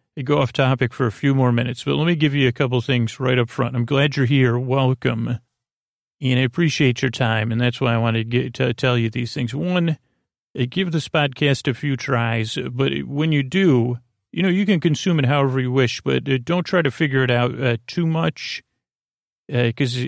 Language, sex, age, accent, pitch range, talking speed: English, male, 40-59, American, 120-140 Hz, 215 wpm